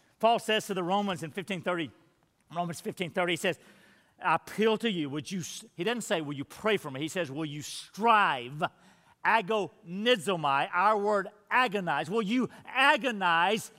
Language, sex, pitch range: English, male, 155-210 Hz